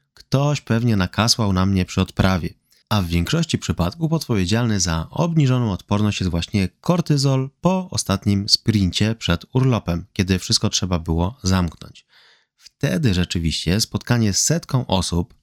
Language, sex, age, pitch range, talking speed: Polish, male, 30-49, 95-125 Hz, 130 wpm